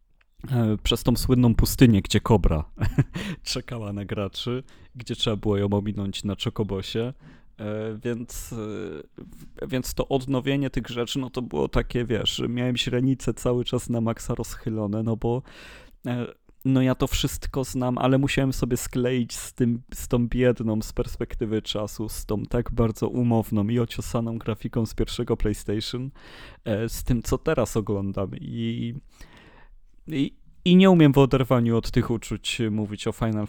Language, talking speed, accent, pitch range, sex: Polish, 145 wpm, native, 110-125 Hz, male